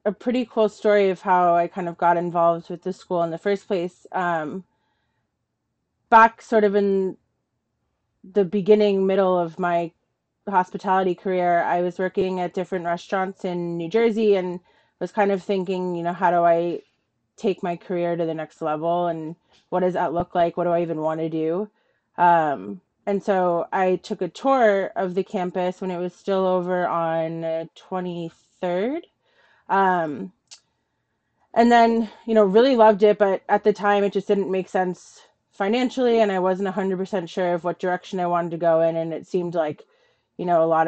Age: 30-49